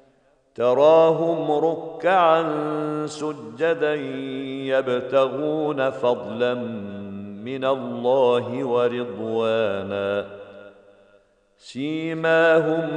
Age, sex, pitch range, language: 50-69, male, 120-150 Hz, Arabic